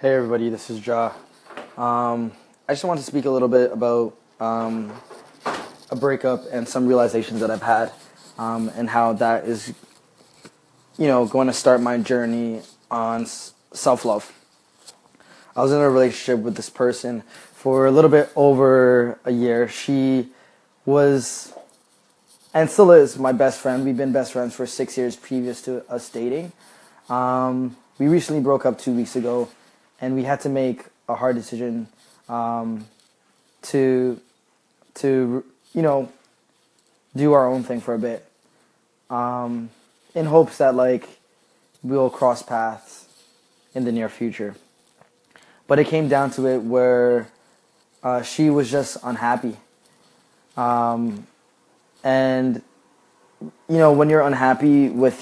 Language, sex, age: English, male, 20-39